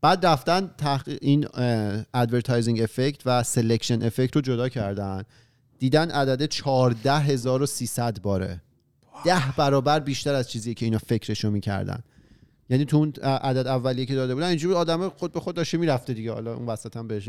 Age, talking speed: 40-59, 165 wpm